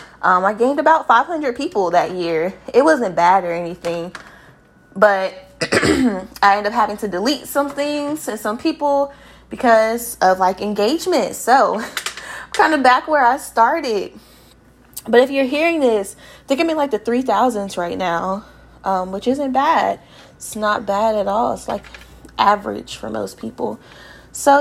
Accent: American